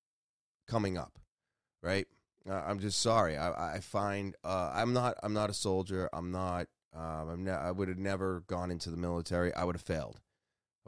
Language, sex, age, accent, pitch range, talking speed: English, male, 20-39, American, 85-110 Hz, 195 wpm